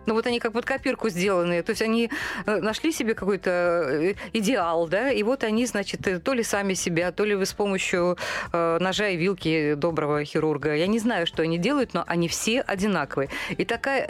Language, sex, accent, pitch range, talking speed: Russian, female, native, 170-225 Hz, 190 wpm